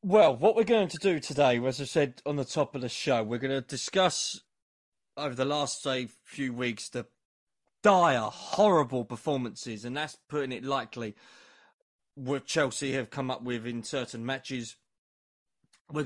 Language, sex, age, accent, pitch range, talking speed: English, male, 20-39, British, 120-145 Hz, 170 wpm